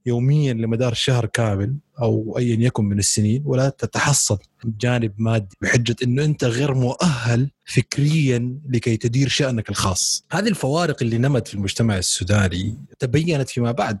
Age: 30-49